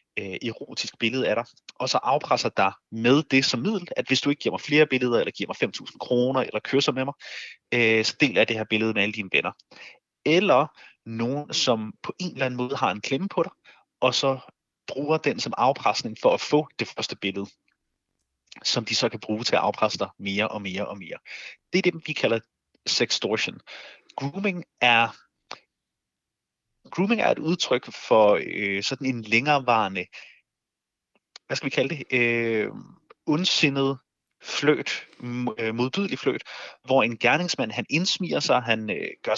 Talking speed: 175 wpm